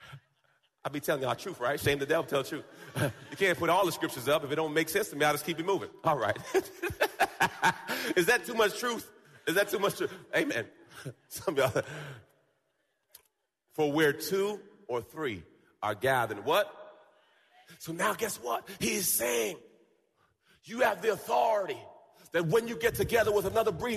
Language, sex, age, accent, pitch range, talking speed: English, male, 40-59, American, 200-310 Hz, 180 wpm